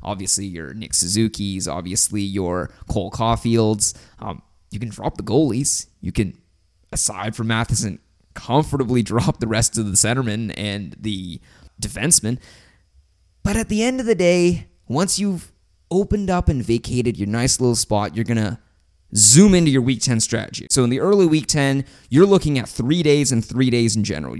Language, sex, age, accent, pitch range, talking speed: English, male, 20-39, American, 105-145 Hz, 175 wpm